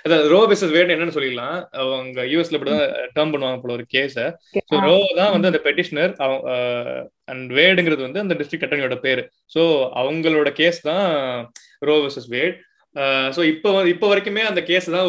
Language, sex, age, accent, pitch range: Tamil, male, 20-39, native, 135-175 Hz